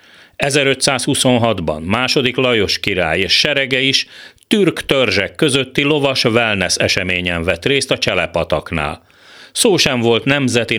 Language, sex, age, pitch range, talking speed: Hungarian, male, 40-59, 95-140 Hz, 115 wpm